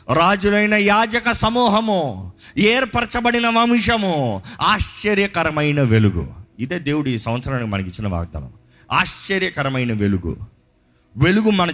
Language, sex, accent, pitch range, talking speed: Telugu, male, native, 115-185 Hz, 90 wpm